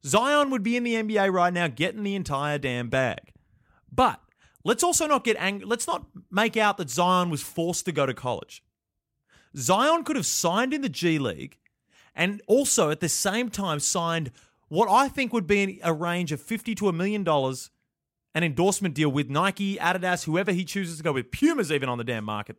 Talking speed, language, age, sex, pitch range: 205 wpm, English, 30-49, male, 160-225 Hz